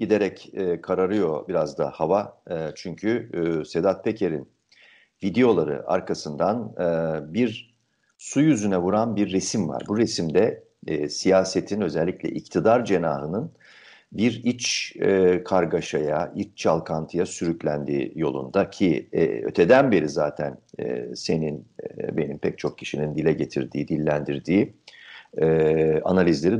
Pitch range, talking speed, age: 80-95 Hz, 95 wpm, 50-69